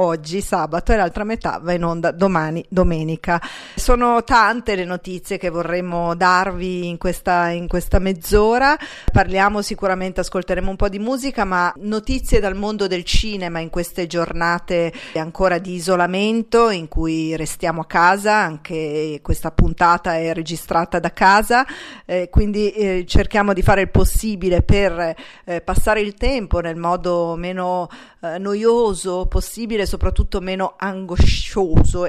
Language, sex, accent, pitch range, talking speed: Italian, female, native, 175-210 Hz, 140 wpm